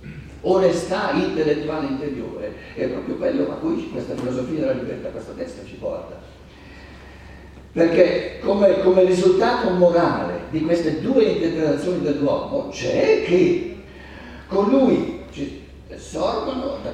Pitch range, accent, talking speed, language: 155-250 Hz, native, 115 wpm, Italian